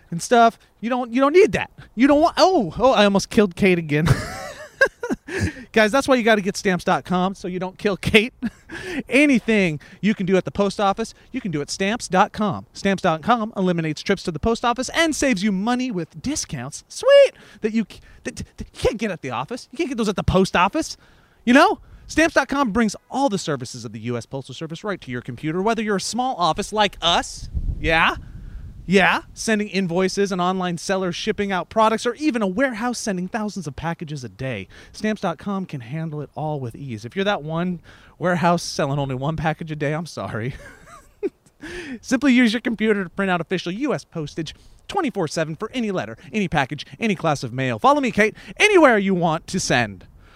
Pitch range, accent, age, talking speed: 165-235 Hz, American, 30-49, 200 wpm